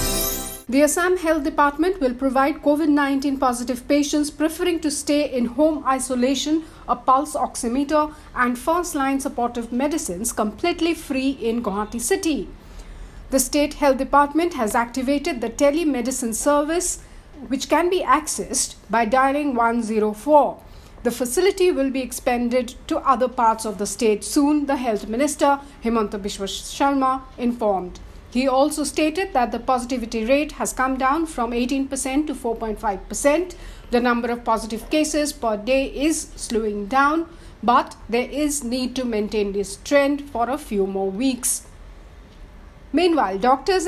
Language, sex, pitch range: English, female, 230-295 Hz